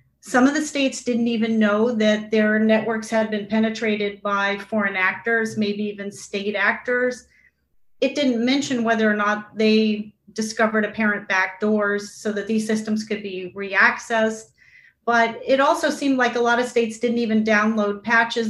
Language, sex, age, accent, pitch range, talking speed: English, female, 40-59, American, 210-250 Hz, 160 wpm